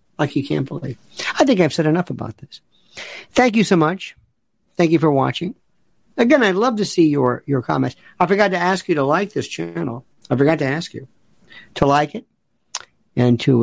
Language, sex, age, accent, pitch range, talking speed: English, male, 60-79, American, 135-200 Hz, 205 wpm